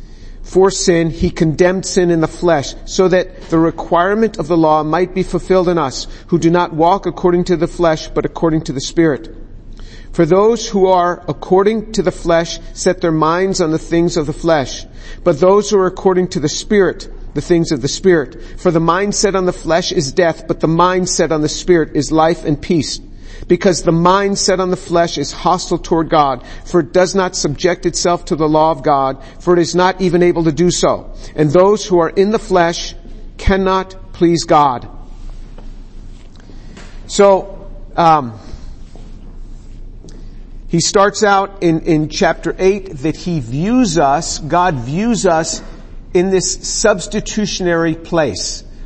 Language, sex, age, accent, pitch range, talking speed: English, male, 50-69, American, 160-185 Hz, 175 wpm